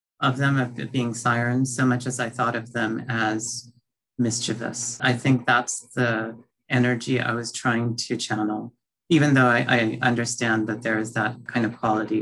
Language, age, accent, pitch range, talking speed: English, 40-59, American, 110-125 Hz, 175 wpm